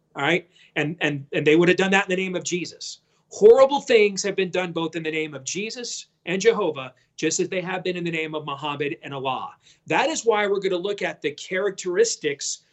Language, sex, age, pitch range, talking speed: English, male, 40-59, 155-195 Hz, 235 wpm